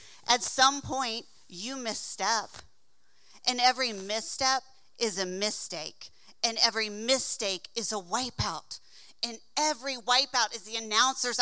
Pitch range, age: 215-275 Hz, 40-59